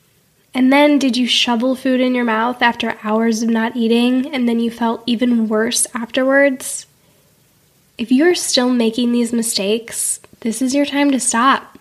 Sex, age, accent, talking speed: female, 10-29, American, 170 wpm